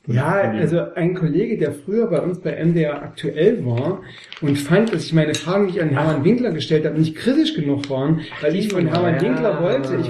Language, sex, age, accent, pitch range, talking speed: German, male, 40-59, German, 145-170 Hz, 215 wpm